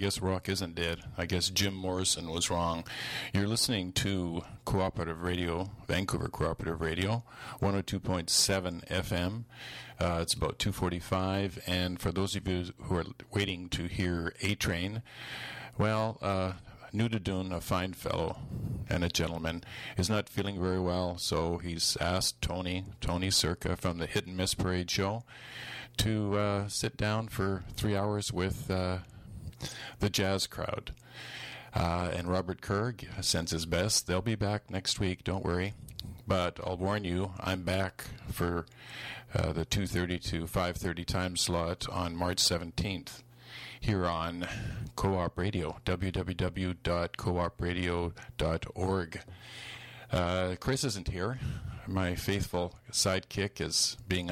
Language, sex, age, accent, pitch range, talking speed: English, male, 50-69, American, 90-105 Hz, 135 wpm